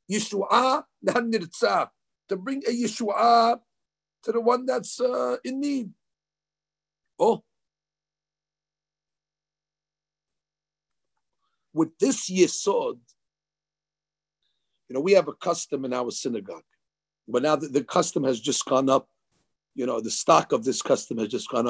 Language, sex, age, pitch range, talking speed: English, male, 50-69, 140-225 Hz, 120 wpm